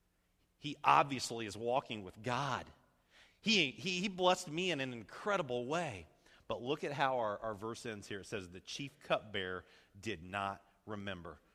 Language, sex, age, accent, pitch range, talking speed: English, male, 40-59, American, 110-160 Hz, 165 wpm